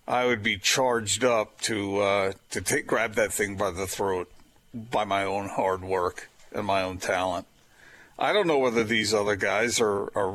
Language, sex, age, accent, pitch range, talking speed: English, male, 50-69, American, 110-165 Hz, 190 wpm